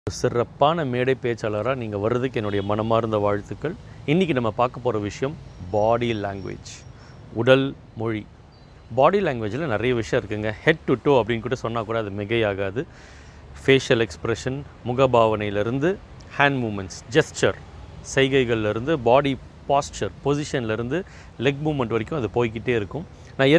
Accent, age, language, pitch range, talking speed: native, 30-49, Tamil, 110-145 Hz, 125 wpm